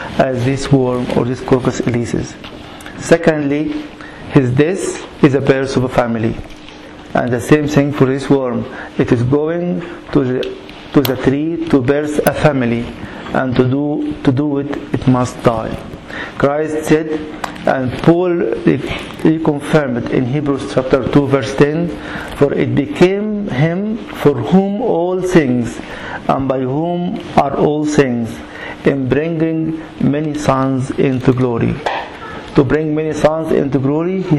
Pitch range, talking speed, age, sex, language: 135-155 Hz, 145 wpm, 50-69, male, English